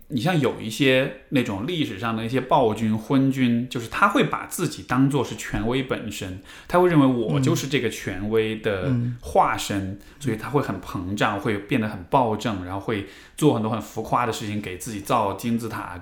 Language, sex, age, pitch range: Chinese, male, 20-39, 105-140 Hz